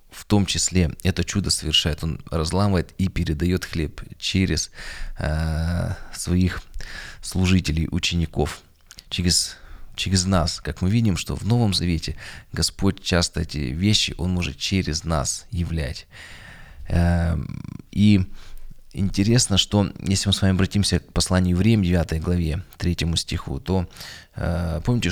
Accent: native